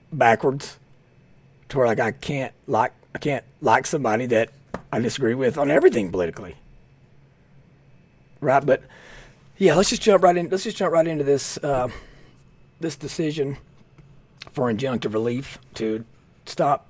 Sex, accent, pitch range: male, American, 135-160 Hz